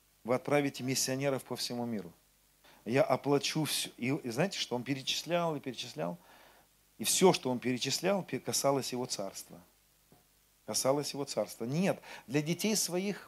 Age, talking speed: 40-59, 145 wpm